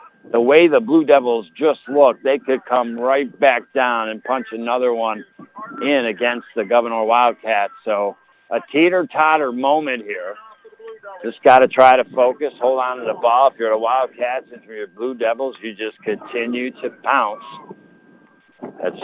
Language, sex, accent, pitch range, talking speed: English, male, American, 120-170 Hz, 165 wpm